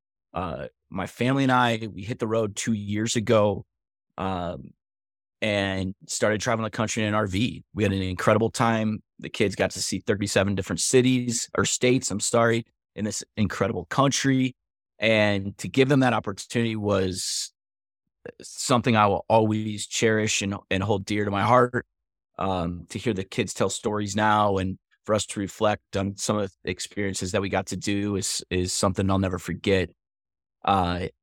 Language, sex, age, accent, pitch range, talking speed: English, male, 30-49, American, 95-115 Hz, 175 wpm